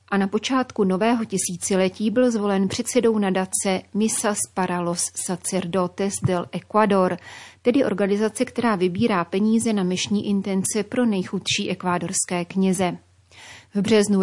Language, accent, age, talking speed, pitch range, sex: Czech, native, 30-49, 120 wpm, 185-210 Hz, female